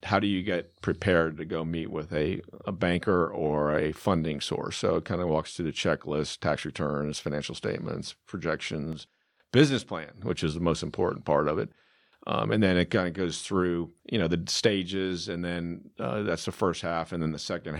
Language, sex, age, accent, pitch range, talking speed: English, male, 50-69, American, 80-90 Hz, 210 wpm